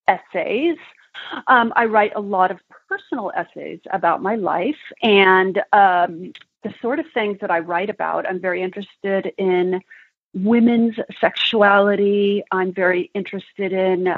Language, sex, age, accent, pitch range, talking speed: English, female, 40-59, American, 185-230 Hz, 135 wpm